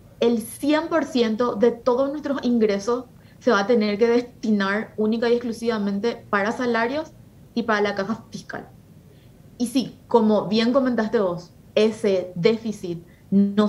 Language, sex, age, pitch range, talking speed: Spanish, female, 20-39, 210-245 Hz, 140 wpm